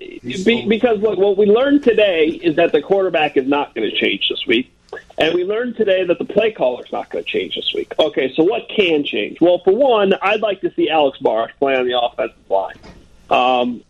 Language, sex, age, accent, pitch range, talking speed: English, male, 40-59, American, 140-225 Hz, 225 wpm